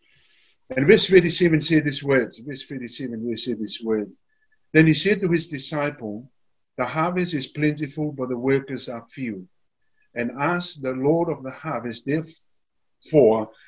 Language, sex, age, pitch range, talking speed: English, male, 50-69, 120-155 Hz, 155 wpm